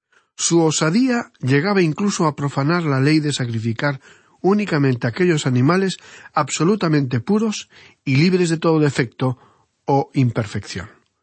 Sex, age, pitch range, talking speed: male, 40-59, 125-170 Hz, 120 wpm